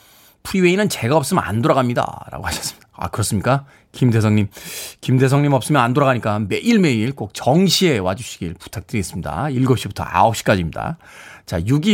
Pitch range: 115-180 Hz